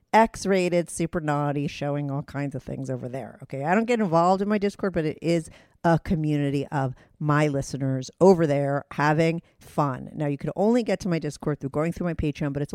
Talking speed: 210 wpm